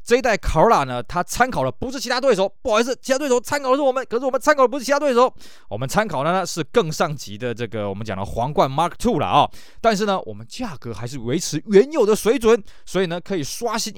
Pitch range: 125-200 Hz